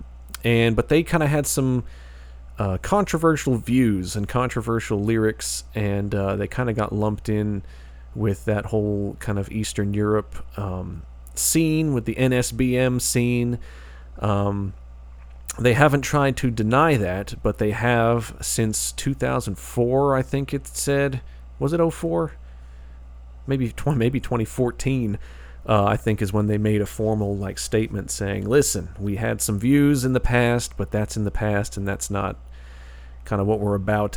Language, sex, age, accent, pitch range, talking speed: English, male, 40-59, American, 95-120 Hz, 160 wpm